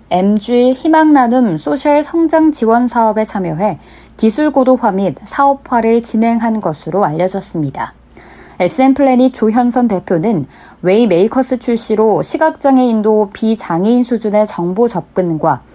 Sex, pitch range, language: female, 190-255 Hz, Korean